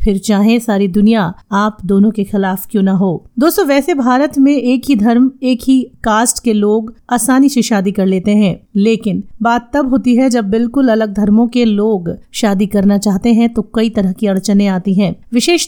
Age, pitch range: 30-49, 205-245 Hz